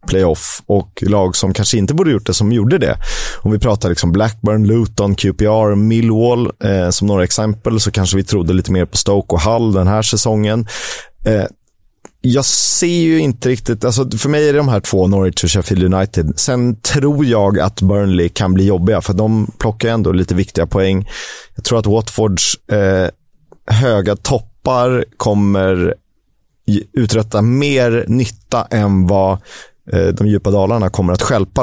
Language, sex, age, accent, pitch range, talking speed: Swedish, male, 30-49, native, 100-120 Hz, 165 wpm